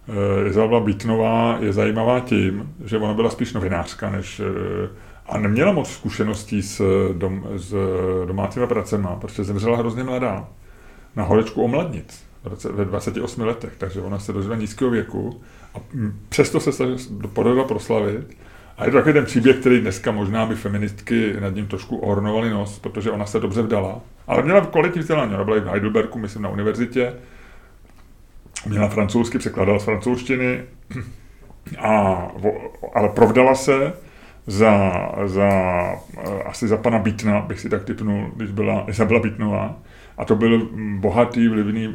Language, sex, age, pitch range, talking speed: Czech, male, 30-49, 100-115 Hz, 145 wpm